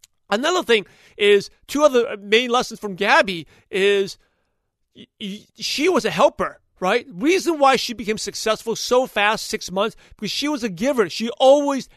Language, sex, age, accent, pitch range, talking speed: English, male, 40-59, American, 195-245 Hz, 155 wpm